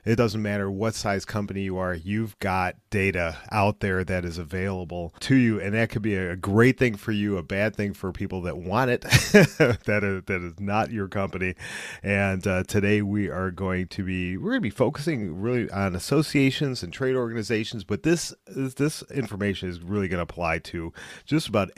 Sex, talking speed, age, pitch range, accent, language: male, 200 wpm, 40-59, 95-115 Hz, American, English